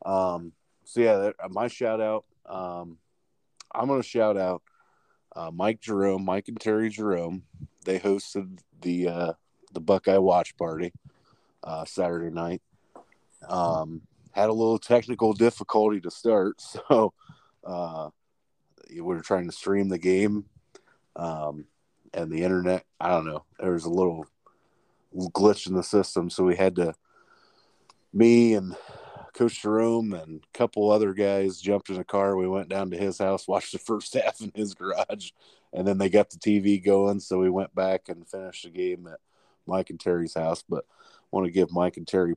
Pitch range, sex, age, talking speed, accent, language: 90-100 Hz, male, 30-49, 170 wpm, American, English